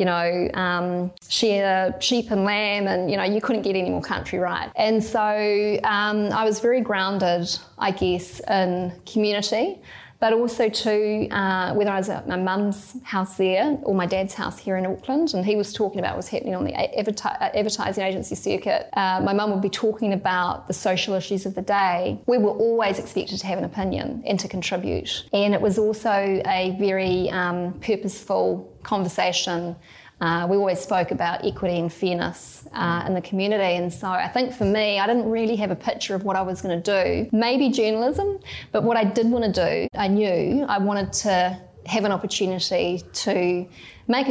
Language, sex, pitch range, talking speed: English, female, 185-215 Hz, 195 wpm